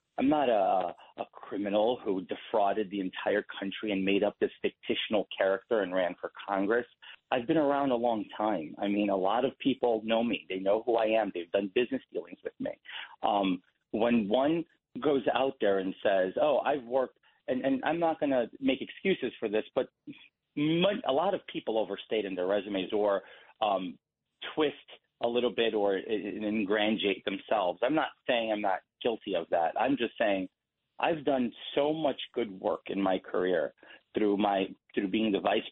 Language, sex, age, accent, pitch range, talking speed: English, male, 40-59, American, 100-120 Hz, 185 wpm